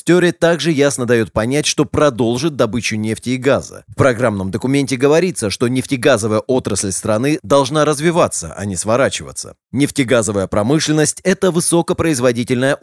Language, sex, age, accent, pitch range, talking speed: Russian, male, 30-49, native, 115-150 Hz, 130 wpm